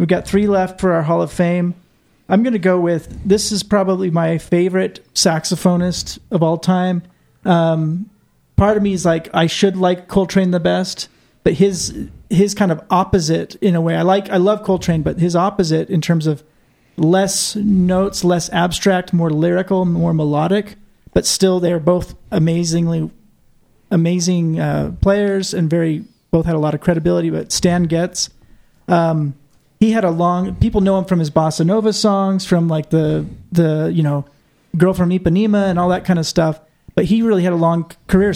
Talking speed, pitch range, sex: 185 wpm, 165-190 Hz, male